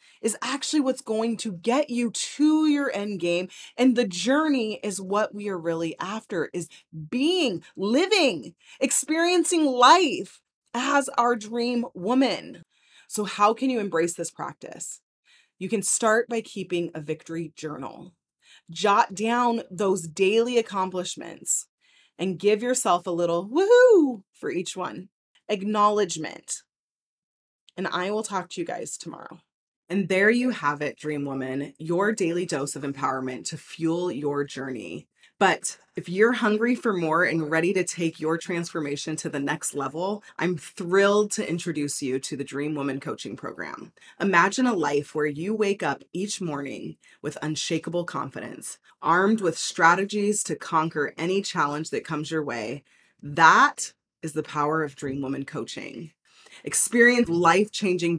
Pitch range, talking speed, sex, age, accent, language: 160-225 Hz, 145 wpm, female, 20-39, American, English